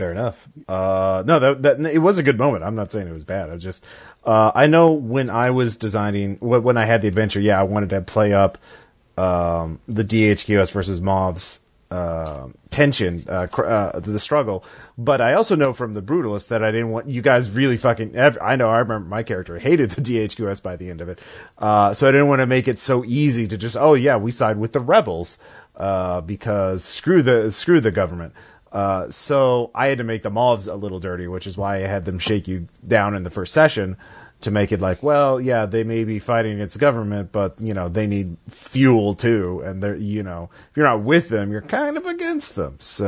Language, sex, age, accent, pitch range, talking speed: English, male, 30-49, American, 95-120 Hz, 235 wpm